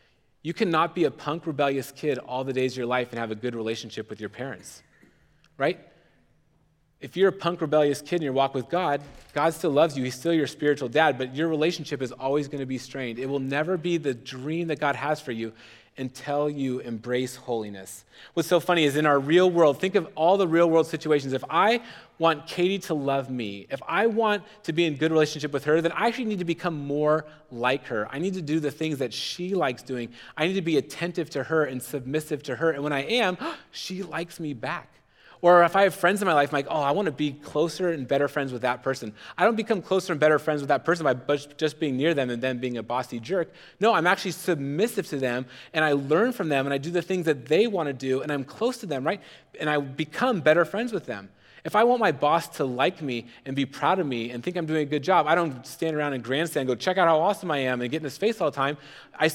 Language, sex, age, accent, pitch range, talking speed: English, male, 30-49, American, 130-170 Hz, 260 wpm